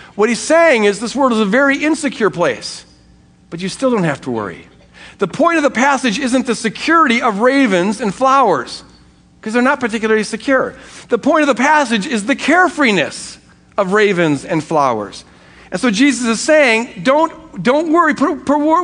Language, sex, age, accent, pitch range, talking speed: English, male, 50-69, American, 170-280 Hz, 180 wpm